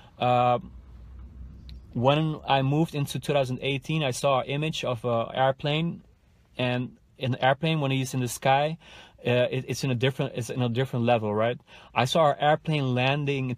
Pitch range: 120-140 Hz